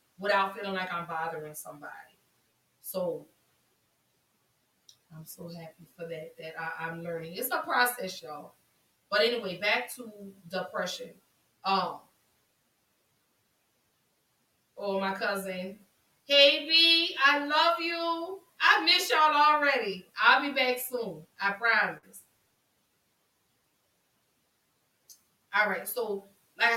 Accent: American